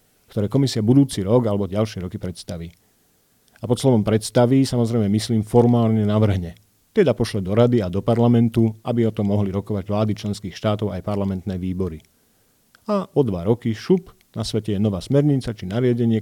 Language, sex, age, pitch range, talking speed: Slovak, male, 40-59, 100-120 Hz, 170 wpm